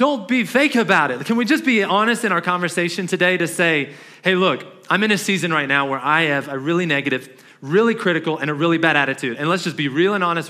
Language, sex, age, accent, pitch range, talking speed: English, male, 30-49, American, 155-205 Hz, 250 wpm